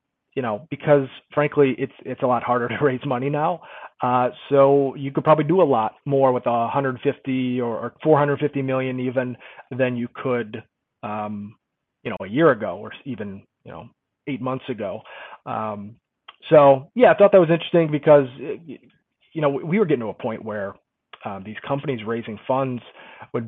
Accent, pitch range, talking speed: American, 115-140 Hz, 180 wpm